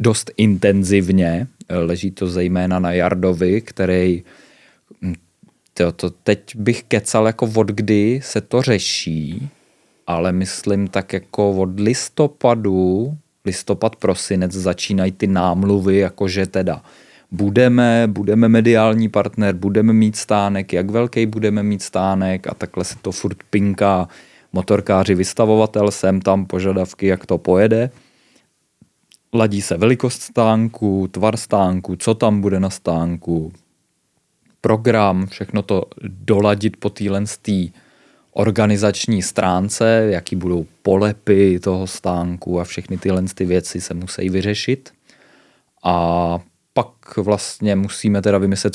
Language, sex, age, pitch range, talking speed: Czech, male, 20-39, 90-105 Hz, 115 wpm